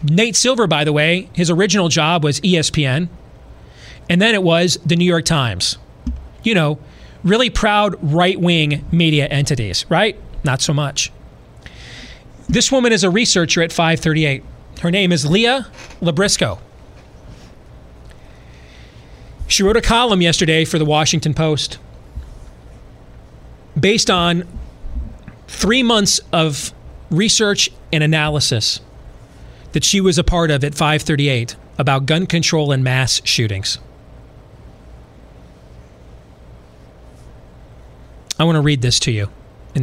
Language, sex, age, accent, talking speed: English, male, 30-49, American, 120 wpm